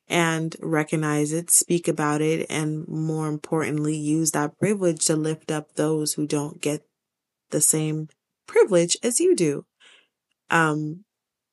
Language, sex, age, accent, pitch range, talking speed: English, female, 20-39, American, 155-190 Hz, 135 wpm